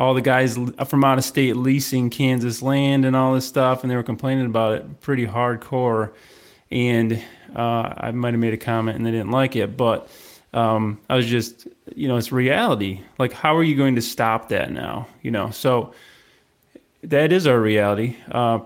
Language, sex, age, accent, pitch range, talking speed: English, male, 20-39, American, 115-130 Hz, 190 wpm